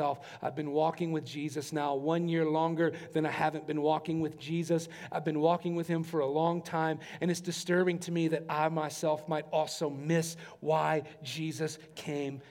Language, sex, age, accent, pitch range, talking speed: English, male, 40-59, American, 155-180 Hz, 185 wpm